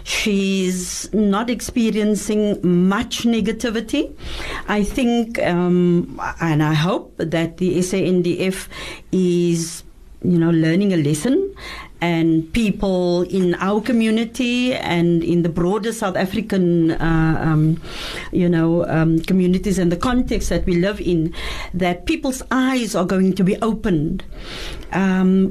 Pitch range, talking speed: 170-220 Hz, 125 wpm